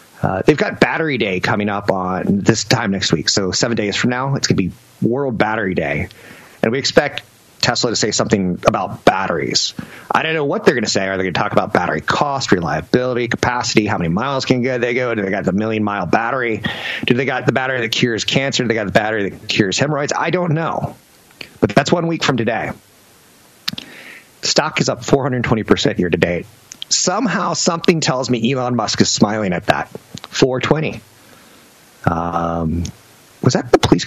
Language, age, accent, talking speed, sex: English, 30-49, American, 190 wpm, male